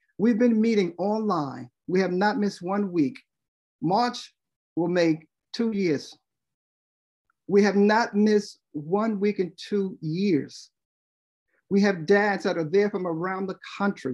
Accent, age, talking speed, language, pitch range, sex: American, 50-69, 145 wpm, English, 160-210 Hz, male